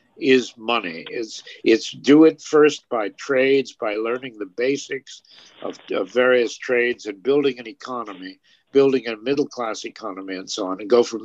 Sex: male